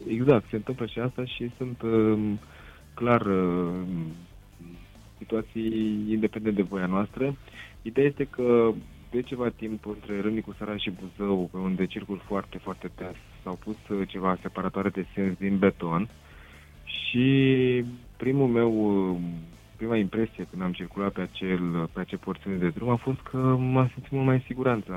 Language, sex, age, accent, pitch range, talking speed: Romanian, male, 20-39, native, 90-115 Hz, 155 wpm